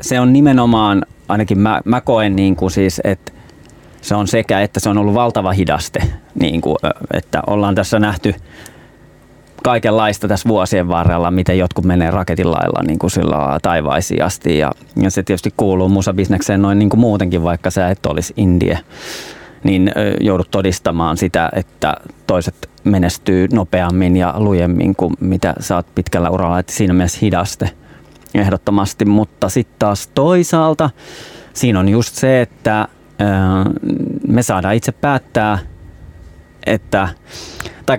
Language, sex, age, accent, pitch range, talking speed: Finnish, male, 30-49, native, 90-110 Hz, 140 wpm